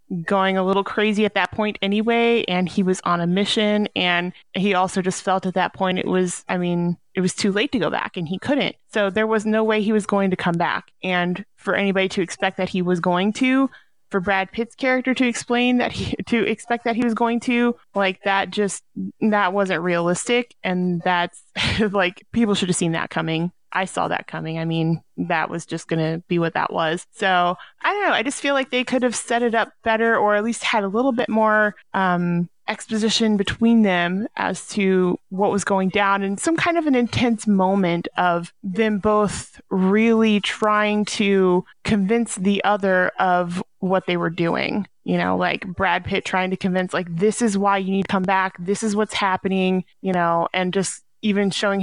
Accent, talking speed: American, 210 wpm